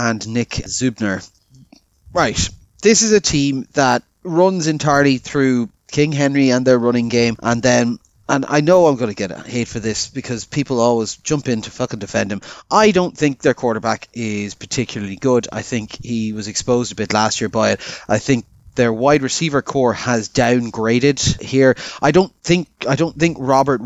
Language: English